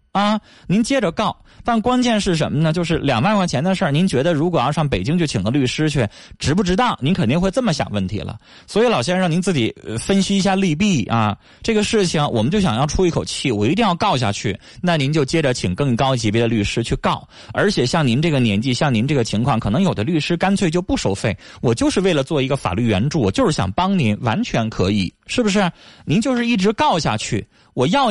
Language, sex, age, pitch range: Chinese, male, 20-39, 120-195 Hz